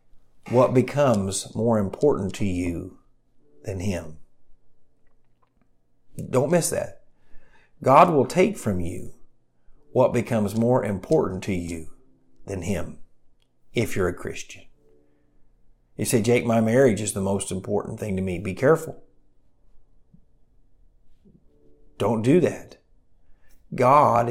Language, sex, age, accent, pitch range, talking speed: English, male, 50-69, American, 95-120 Hz, 115 wpm